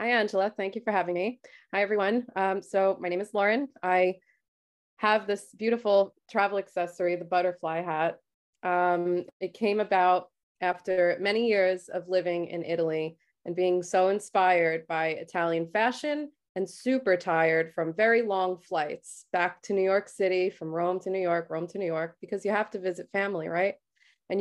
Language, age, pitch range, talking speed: English, 30-49, 175-210 Hz, 175 wpm